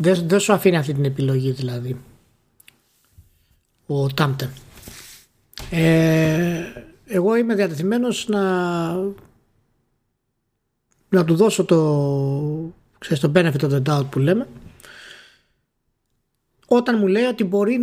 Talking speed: 105 wpm